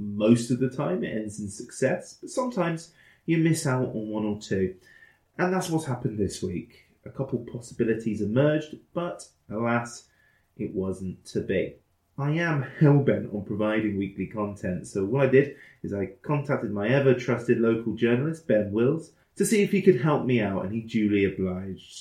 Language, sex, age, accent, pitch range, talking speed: English, male, 30-49, British, 105-145 Hz, 175 wpm